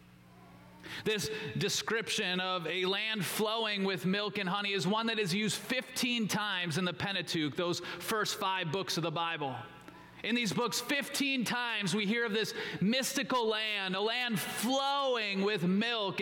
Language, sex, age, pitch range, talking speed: English, male, 30-49, 190-240 Hz, 160 wpm